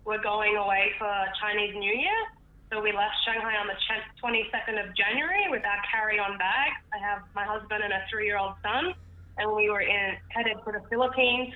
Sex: female